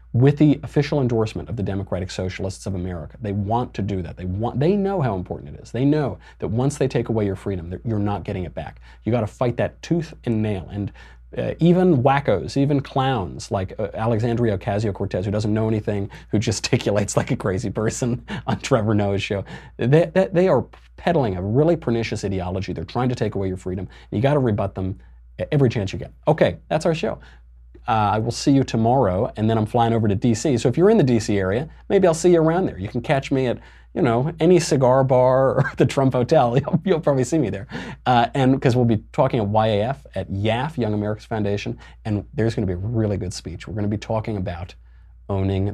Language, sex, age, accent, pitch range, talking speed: English, male, 30-49, American, 95-130 Hz, 230 wpm